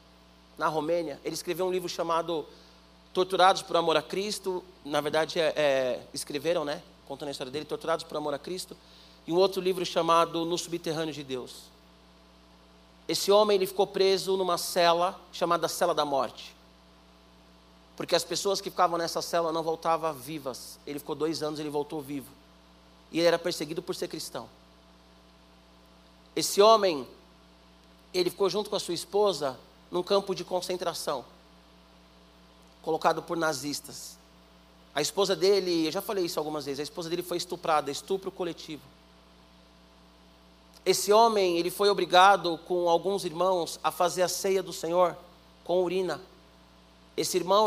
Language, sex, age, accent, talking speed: Portuguese, male, 40-59, Brazilian, 150 wpm